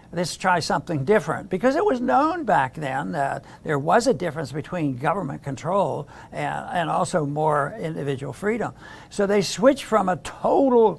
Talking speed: 165 wpm